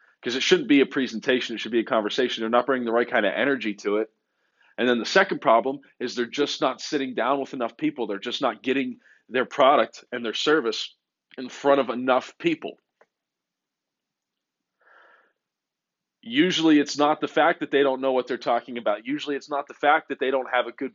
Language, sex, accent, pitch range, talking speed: English, male, American, 125-155 Hz, 210 wpm